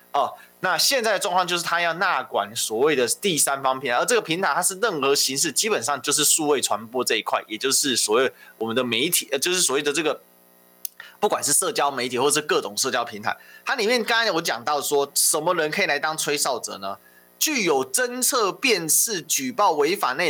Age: 20-39